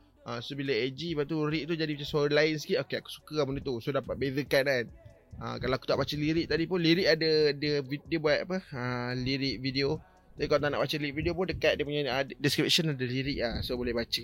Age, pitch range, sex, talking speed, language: 20-39, 130-160 Hz, male, 255 wpm, Malay